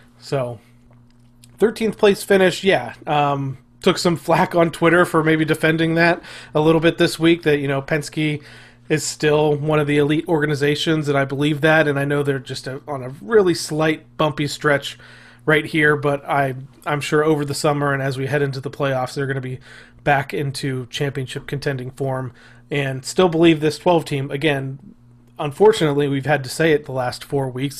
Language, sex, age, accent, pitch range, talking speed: English, male, 30-49, American, 130-150 Hz, 190 wpm